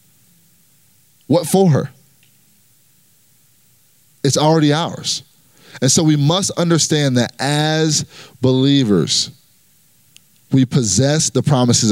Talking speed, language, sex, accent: 90 wpm, English, male, American